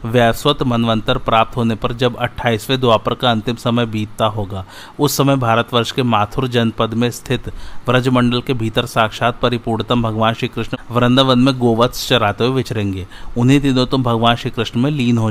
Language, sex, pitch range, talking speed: Hindi, male, 110-125 Hz, 170 wpm